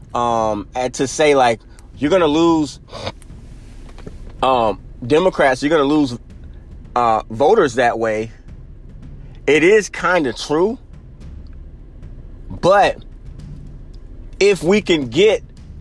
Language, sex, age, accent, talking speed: English, male, 30-49, American, 110 wpm